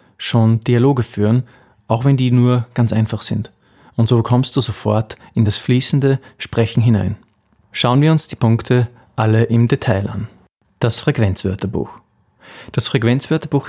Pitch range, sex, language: 110-125 Hz, male, German